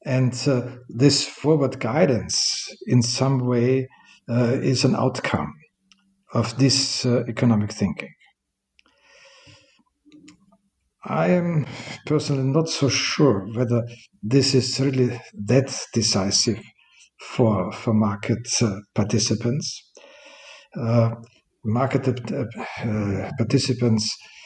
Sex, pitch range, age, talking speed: male, 110-135 Hz, 60-79, 95 wpm